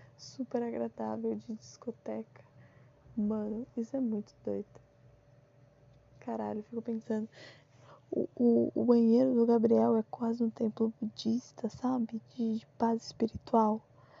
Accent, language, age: Brazilian, Portuguese, 10-29